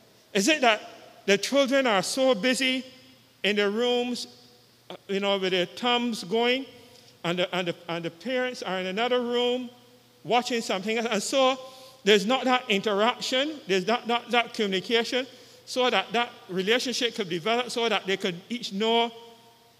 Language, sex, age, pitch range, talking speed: English, male, 50-69, 185-245 Hz, 160 wpm